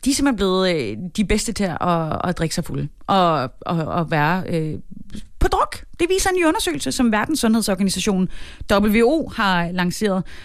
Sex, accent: female, native